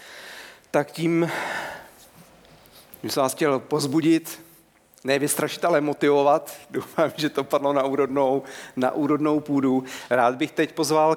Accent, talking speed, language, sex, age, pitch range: native, 120 wpm, Czech, male, 40-59, 140-170 Hz